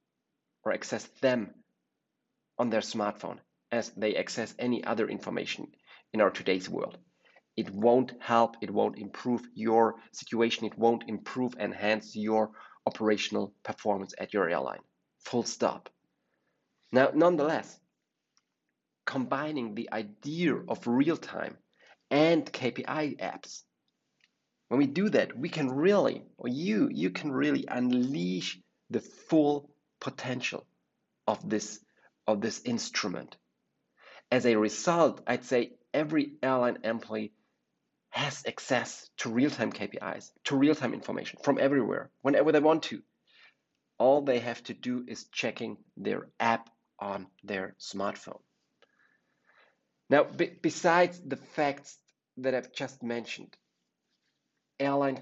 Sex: male